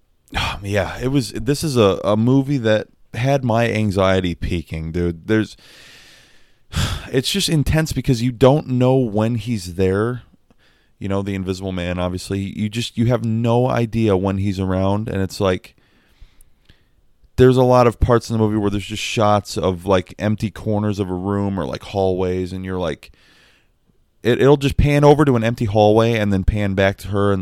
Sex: male